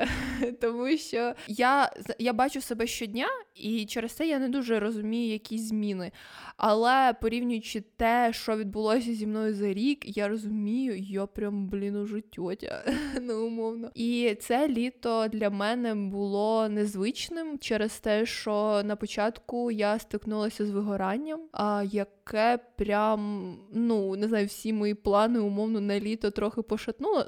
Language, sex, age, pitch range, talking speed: Ukrainian, female, 20-39, 205-230 Hz, 135 wpm